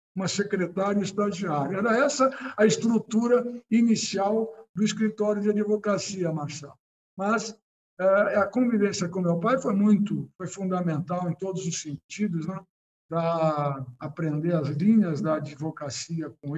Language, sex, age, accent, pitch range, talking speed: Portuguese, male, 60-79, Brazilian, 170-215 Hz, 125 wpm